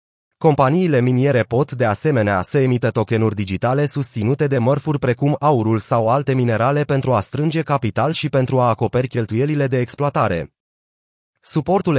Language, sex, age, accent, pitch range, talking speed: Romanian, male, 30-49, native, 115-145 Hz, 145 wpm